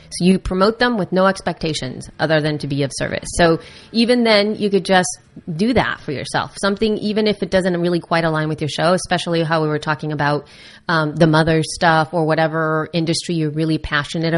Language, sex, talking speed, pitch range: English, female, 205 wpm, 165-230 Hz